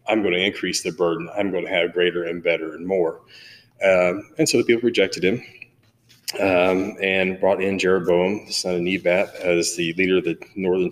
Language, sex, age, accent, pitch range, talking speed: English, male, 30-49, American, 95-120 Hz, 205 wpm